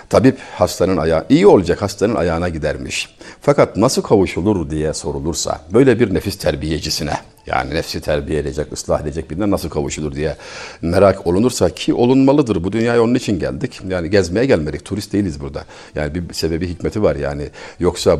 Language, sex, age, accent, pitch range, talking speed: Turkish, male, 50-69, native, 80-135 Hz, 160 wpm